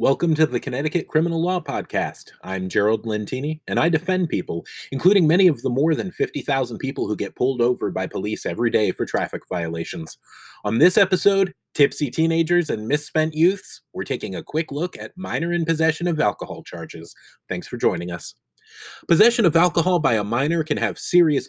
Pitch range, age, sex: 130-175 Hz, 30-49, male